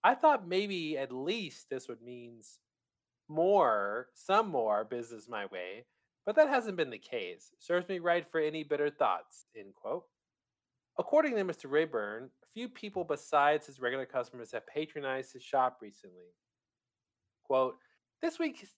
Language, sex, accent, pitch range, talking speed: English, male, American, 120-185 Hz, 155 wpm